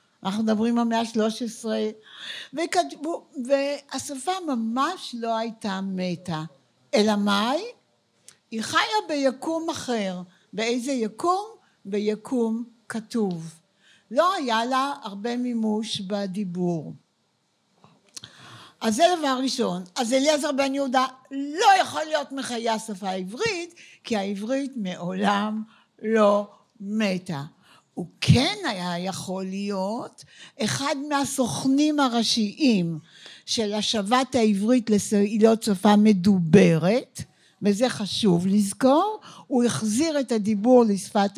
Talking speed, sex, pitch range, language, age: 100 wpm, female, 205-260 Hz, Hebrew, 60-79